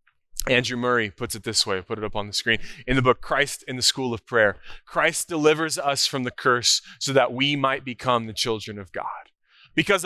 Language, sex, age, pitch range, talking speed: English, male, 20-39, 105-130 Hz, 225 wpm